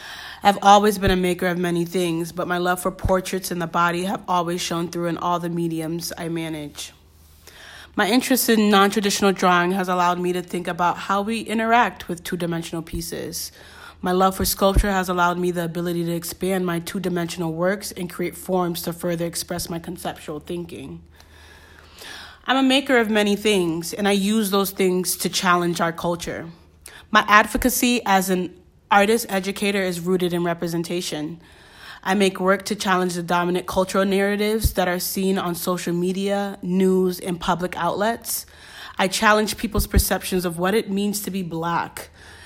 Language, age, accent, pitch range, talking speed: English, 30-49, American, 170-200 Hz, 170 wpm